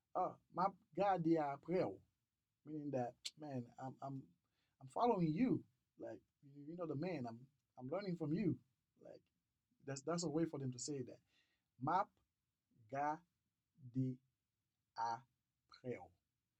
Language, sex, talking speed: English, male, 125 wpm